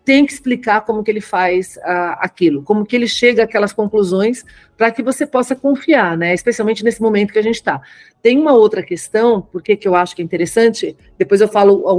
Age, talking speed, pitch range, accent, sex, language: 40-59, 215 wpm, 185-235 Hz, Brazilian, female, Portuguese